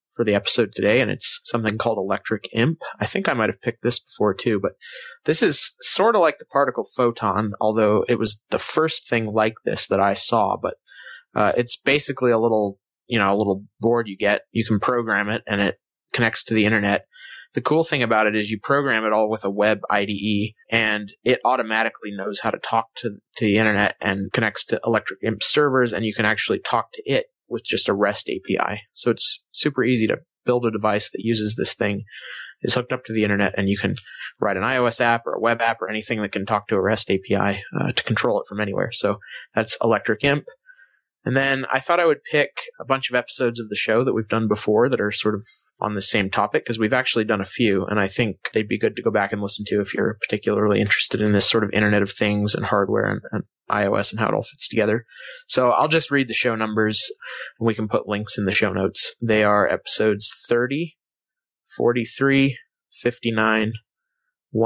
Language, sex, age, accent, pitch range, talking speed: English, male, 20-39, American, 105-120 Hz, 225 wpm